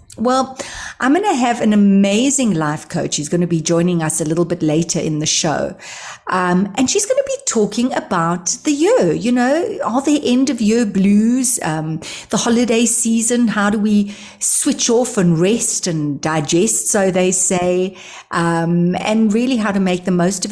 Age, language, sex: 60-79, English, female